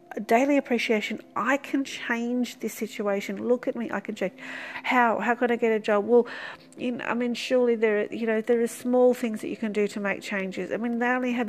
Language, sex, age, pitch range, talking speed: English, female, 40-59, 195-235 Hz, 235 wpm